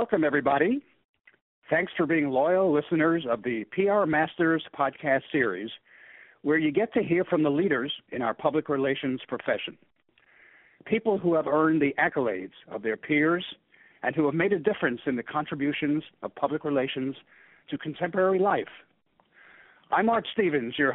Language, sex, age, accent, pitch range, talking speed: English, male, 50-69, American, 135-170 Hz, 155 wpm